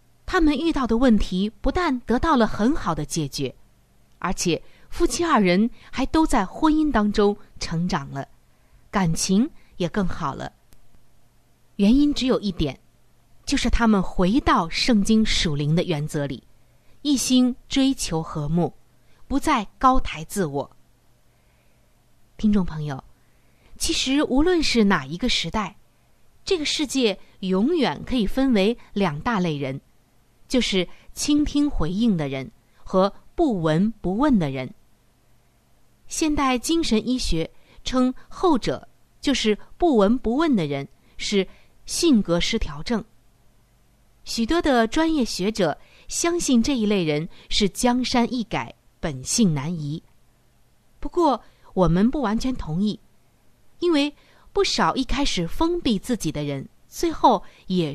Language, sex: Chinese, female